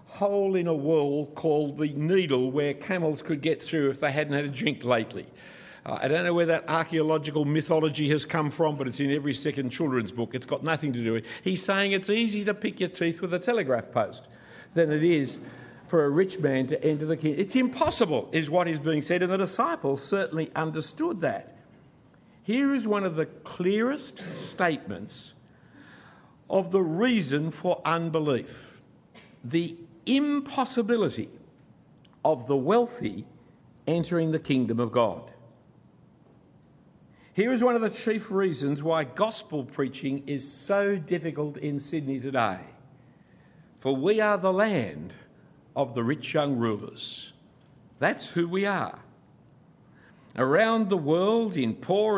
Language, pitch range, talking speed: English, 145-195 Hz, 160 wpm